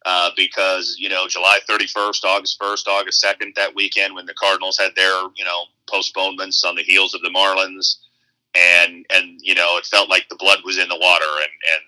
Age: 30-49